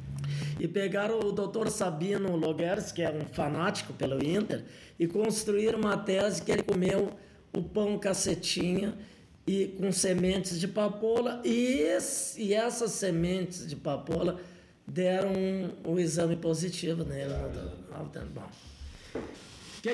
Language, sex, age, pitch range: Portuguese, male, 20-39, 165-210 Hz